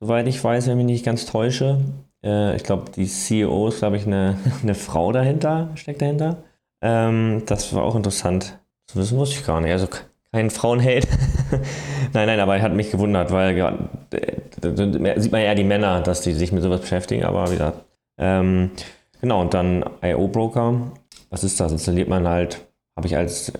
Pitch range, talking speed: 85-105 Hz, 180 wpm